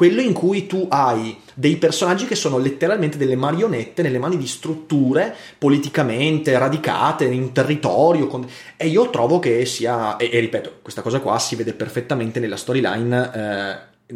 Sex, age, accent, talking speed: male, 30-49, native, 160 wpm